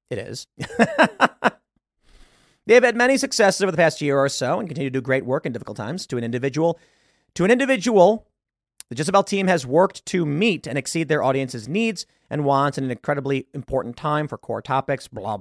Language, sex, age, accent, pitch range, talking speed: English, male, 30-49, American, 130-185 Hz, 195 wpm